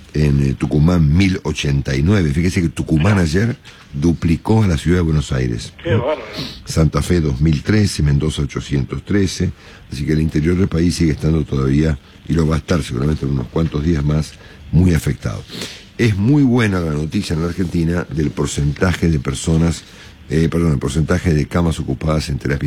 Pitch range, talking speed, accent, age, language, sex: 75-90 Hz, 165 wpm, Argentinian, 50-69, English, male